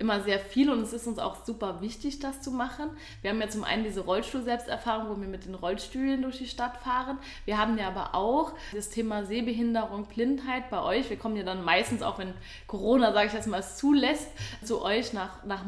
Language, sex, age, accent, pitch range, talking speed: German, female, 20-39, German, 200-235 Hz, 220 wpm